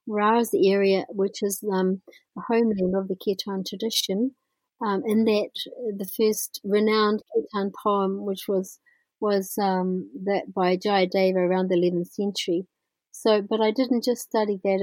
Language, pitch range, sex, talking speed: English, 180-205 Hz, female, 160 wpm